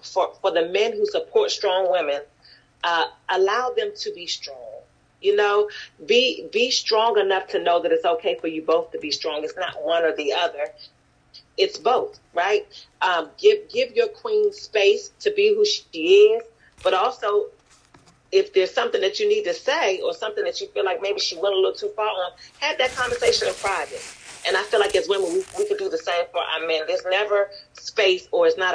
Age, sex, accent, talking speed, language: 40-59, female, American, 210 wpm, English